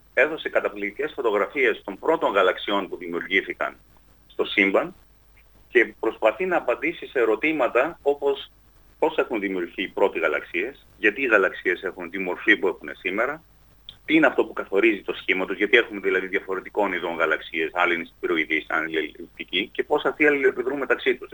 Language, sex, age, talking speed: Greek, male, 30-49, 160 wpm